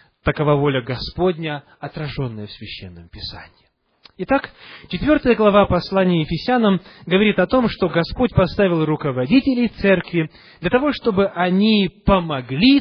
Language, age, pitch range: English, 30-49, 135-210 Hz